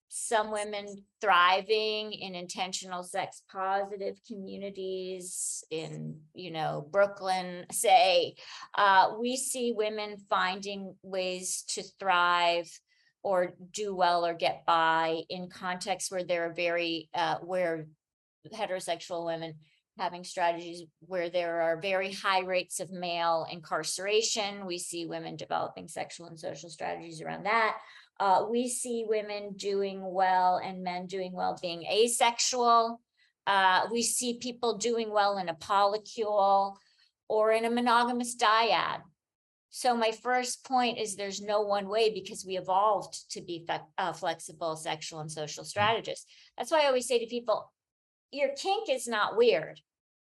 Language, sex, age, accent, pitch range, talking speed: English, female, 40-59, American, 175-220 Hz, 140 wpm